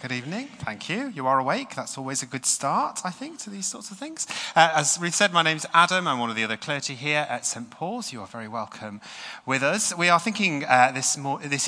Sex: male